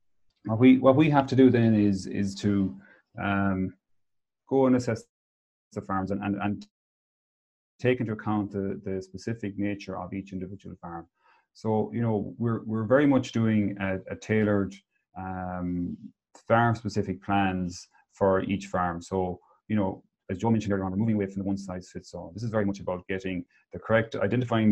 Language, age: English, 30-49